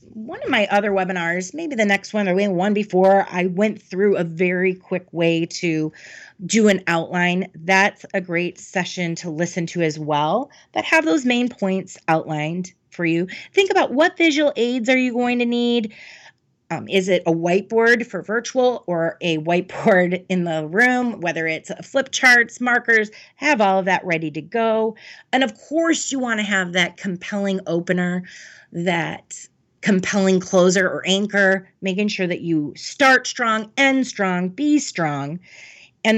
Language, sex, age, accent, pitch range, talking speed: English, female, 30-49, American, 180-235 Hz, 170 wpm